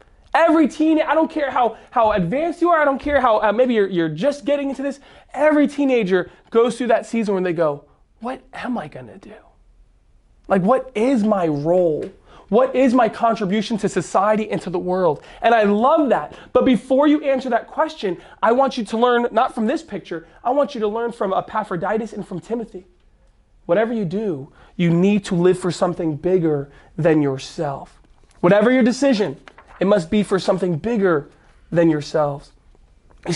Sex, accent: male, American